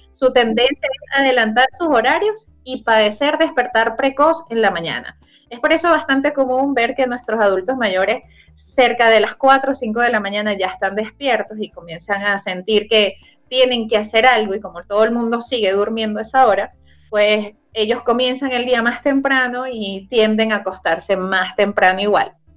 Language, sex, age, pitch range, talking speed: Spanish, female, 20-39, 205-260 Hz, 180 wpm